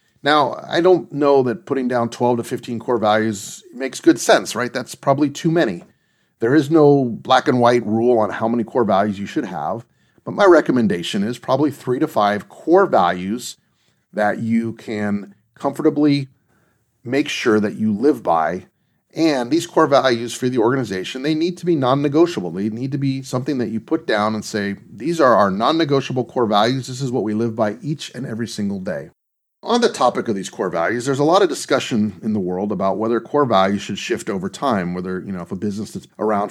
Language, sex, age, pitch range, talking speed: English, male, 40-59, 105-145 Hz, 205 wpm